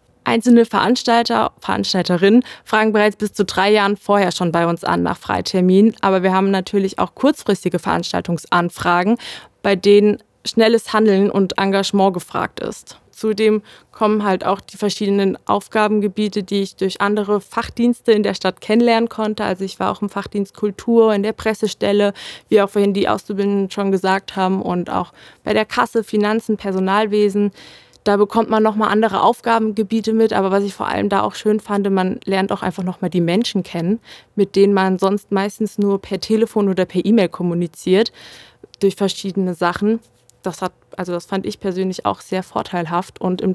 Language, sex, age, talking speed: German, female, 20-39, 170 wpm